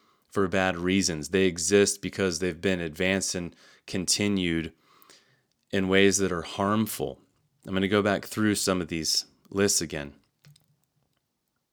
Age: 30-49